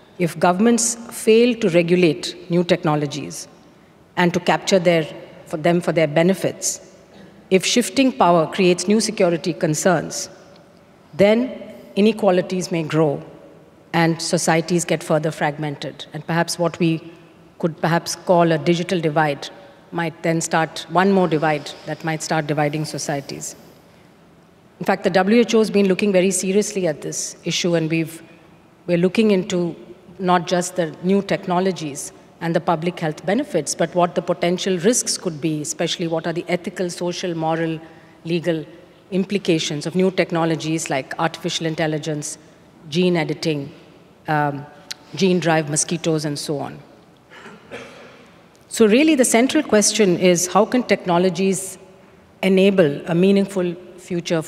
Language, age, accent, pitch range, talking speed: English, 50-69, Indian, 165-190 Hz, 135 wpm